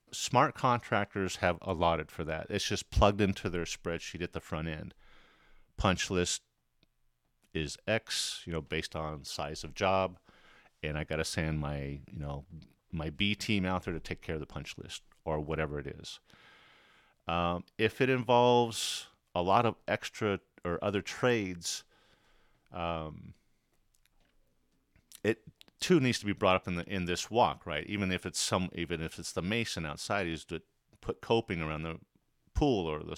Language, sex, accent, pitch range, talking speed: English, male, American, 80-105 Hz, 170 wpm